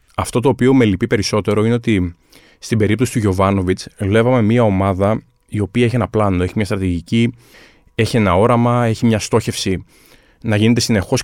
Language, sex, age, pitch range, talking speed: Greek, male, 20-39, 100-130 Hz, 170 wpm